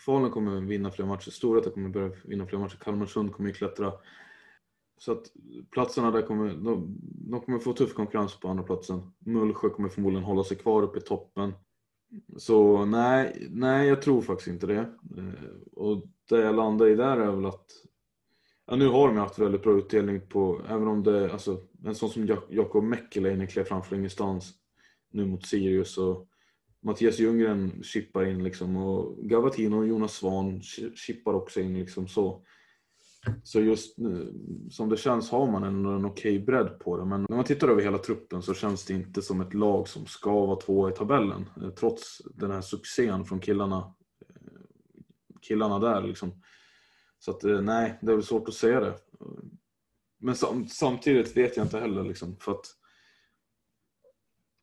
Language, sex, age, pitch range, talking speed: Swedish, male, 20-39, 95-115 Hz, 180 wpm